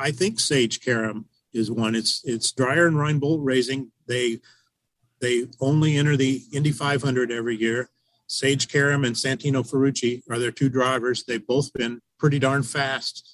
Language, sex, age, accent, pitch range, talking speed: English, male, 50-69, American, 120-140 Hz, 160 wpm